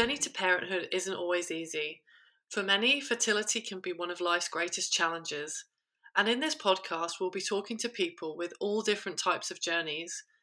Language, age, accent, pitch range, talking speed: English, 30-49, British, 170-225 Hz, 180 wpm